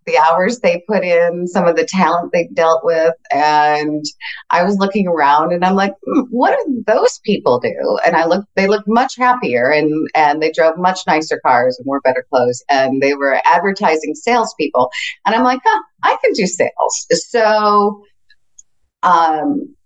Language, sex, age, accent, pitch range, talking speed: English, female, 40-59, American, 145-210 Hz, 175 wpm